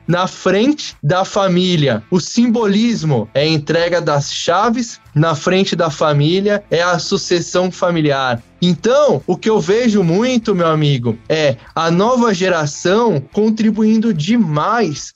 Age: 20-39